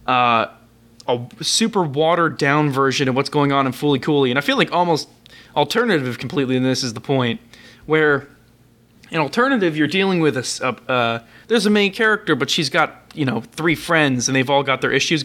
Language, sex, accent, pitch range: English, male, American, 130-175 Hz